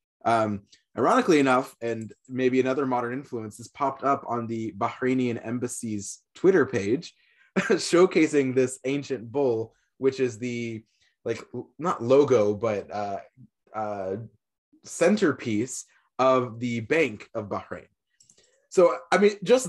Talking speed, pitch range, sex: 120 wpm, 110-135 Hz, male